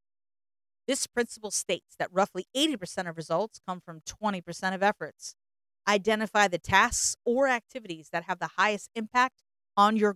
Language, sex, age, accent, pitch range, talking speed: English, female, 40-59, American, 180-230 Hz, 150 wpm